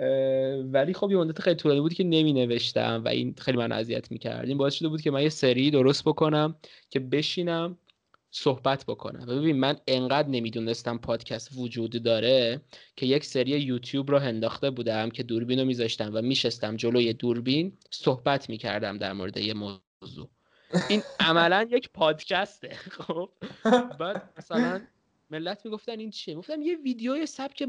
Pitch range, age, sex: 130-200 Hz, 20-39, male